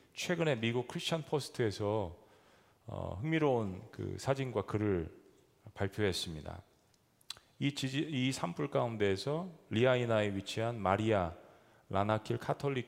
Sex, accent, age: male, native, 40-59